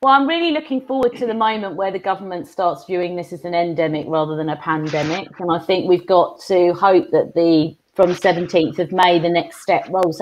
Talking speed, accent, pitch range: 225 wpm, British, 170-230 Hz